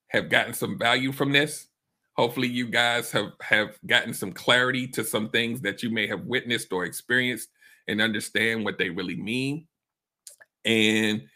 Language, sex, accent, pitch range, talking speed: English, male, American, 115-140 Hz, 165 wpm